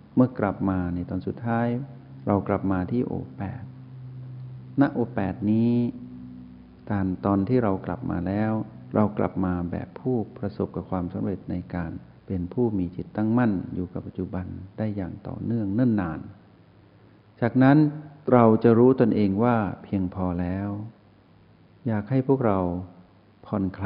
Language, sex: Thai, male